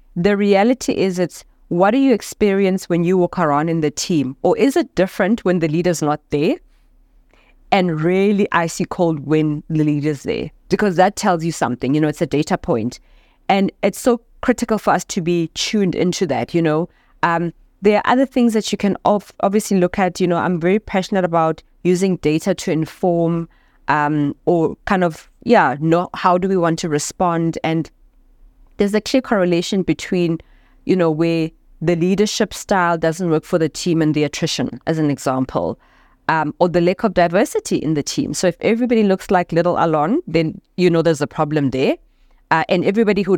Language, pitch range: English, 160-200 Hz